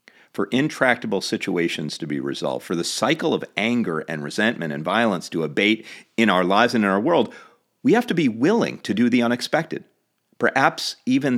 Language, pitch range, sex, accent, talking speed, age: English, 110-150 Hz, male, American, 185 wpm, 40-59